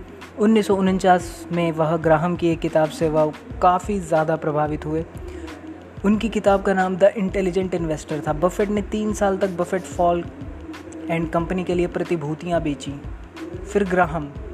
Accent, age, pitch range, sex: native, 20-39, 160-185 Hz, female